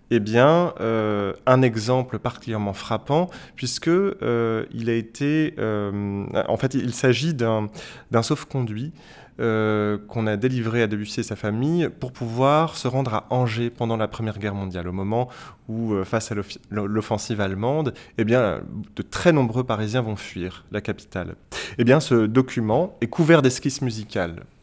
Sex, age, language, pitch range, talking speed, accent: male, 20-39, French, 105-135 Hz, 150 wpm, French